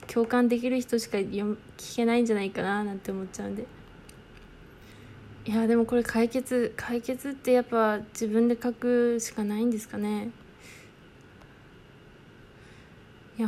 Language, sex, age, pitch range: Japanese, female, 20-39, 225-275 Hz